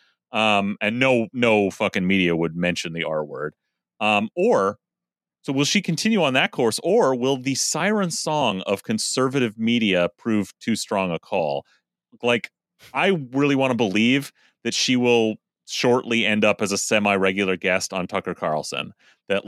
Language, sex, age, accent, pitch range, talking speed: English, male, 30-49, American, 95-120 Hz, 165 wpm